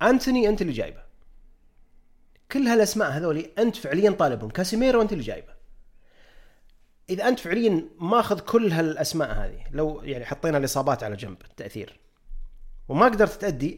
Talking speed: 140 wpm